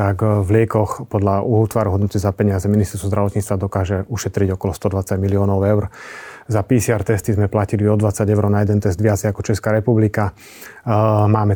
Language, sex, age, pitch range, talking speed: Slovak, male, 30-49, 105-115 Hz, 170 wpm